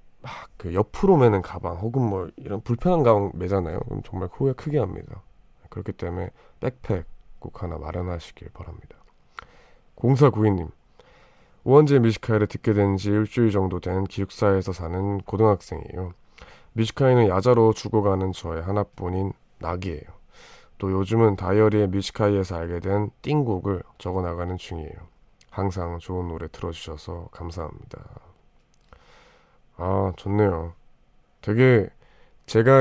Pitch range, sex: 85-115 Hz, male